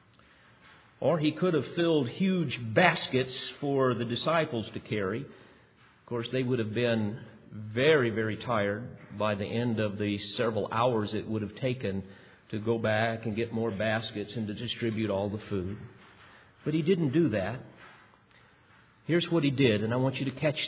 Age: 50-69